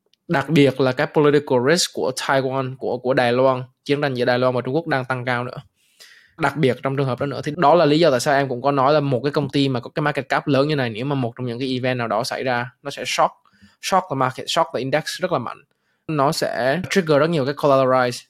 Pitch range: 125-145 Hz